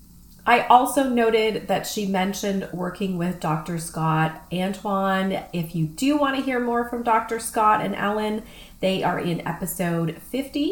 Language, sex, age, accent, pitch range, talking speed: English, female, 20-39, American, 160-200 Hz, 155 wpm